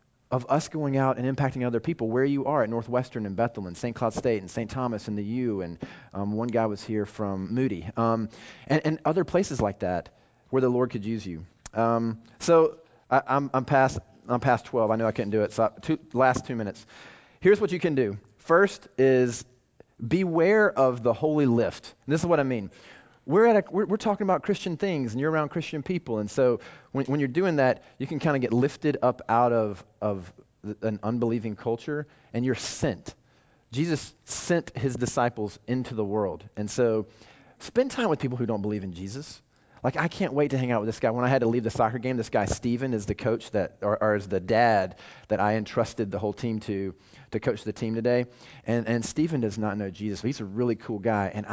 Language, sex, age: English, male, 30-49